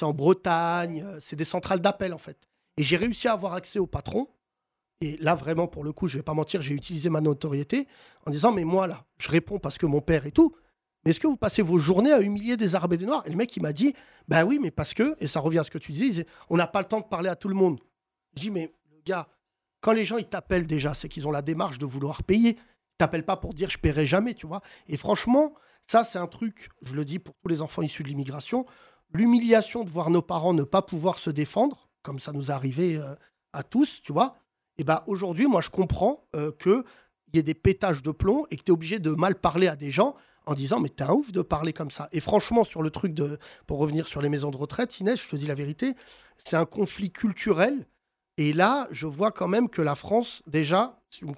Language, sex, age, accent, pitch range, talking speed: French, male, 40-59, French, 155-210 Hz, 265 wpm